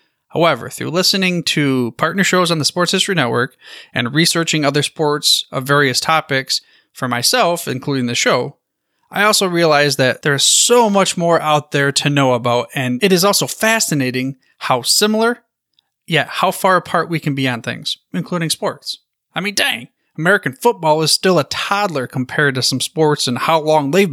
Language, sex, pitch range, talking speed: English, male, 130-180 Hz, 180 wpm